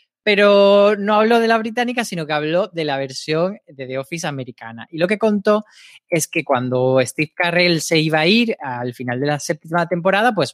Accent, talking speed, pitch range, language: Spanish, 205 wpm, 135-180 Hz, Spanish